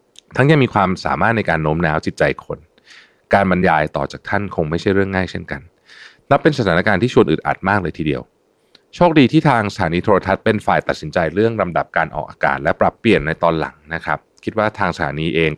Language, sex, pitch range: Thai, male, 80-125 Hz